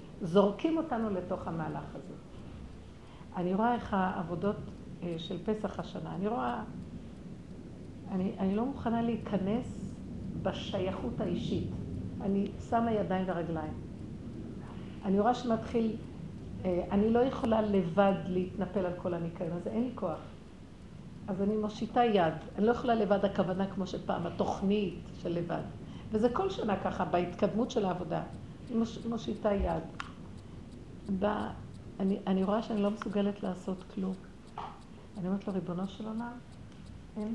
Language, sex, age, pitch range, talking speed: Hebrew, female, 50-69, 185-230 Hz, 130 wpm